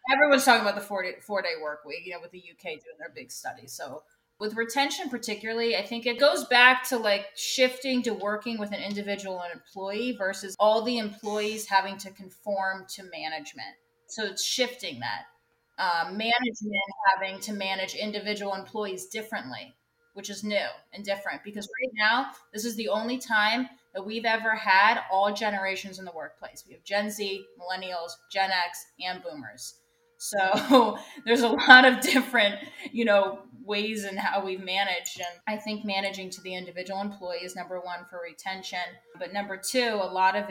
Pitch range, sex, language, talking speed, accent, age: 190-225 Hz, female, English, 180 wpm, American, 20-39